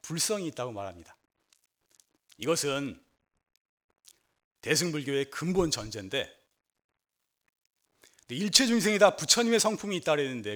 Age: 40-59